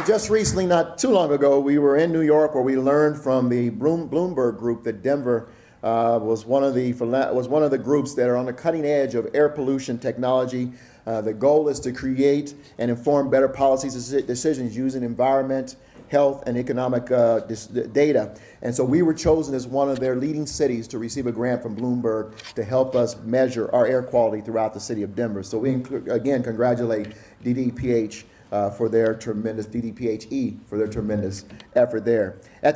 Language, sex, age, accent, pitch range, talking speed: English, male, 50-69, American, 115-140 Hz, 195 wpm